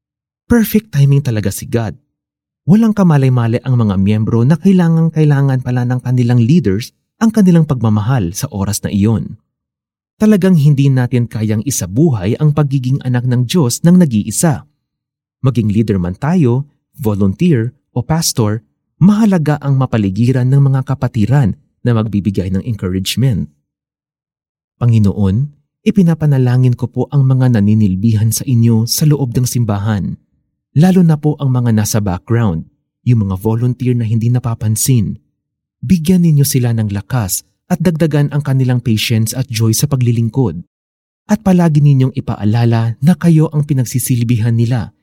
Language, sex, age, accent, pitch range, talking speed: Filipino, male, 30-49, native, 110-150 Hz, 135 wpm